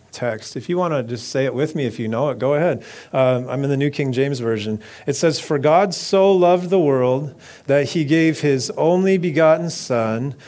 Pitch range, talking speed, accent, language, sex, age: 120-170 Hz, 225 wpm, American, English, male, 40-59